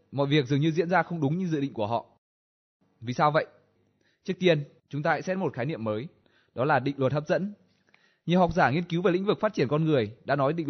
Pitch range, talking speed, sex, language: 120-165 Hz, 265 wpm, male, Vietnamese